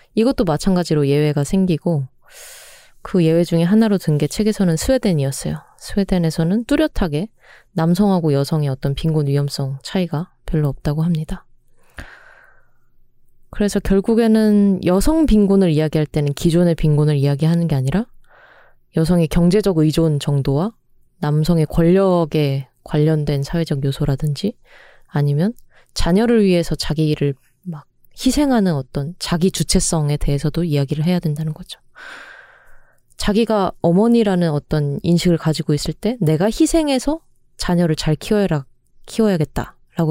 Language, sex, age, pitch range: Korean, female, 20-39, 150-195 Hz